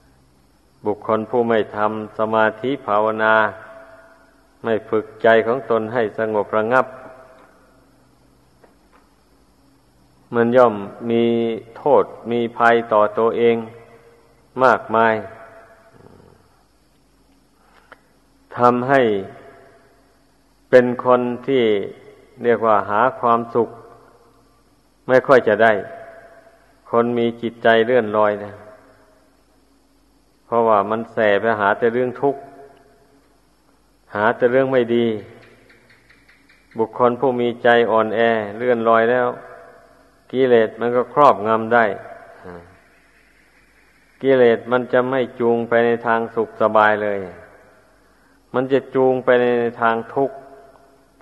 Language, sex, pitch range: Thai, male, 110-125 Hz